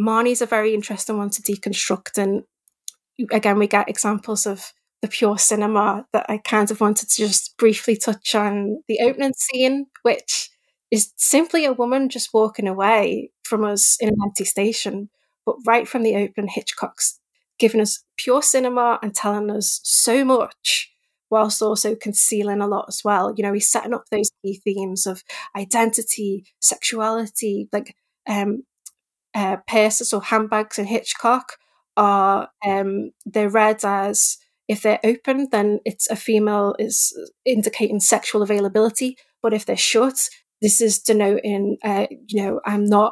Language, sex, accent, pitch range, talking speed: English, female, British, 205-235 Hz, 155 wpm